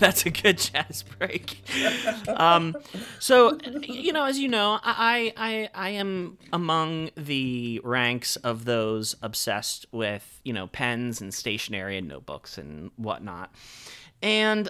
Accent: American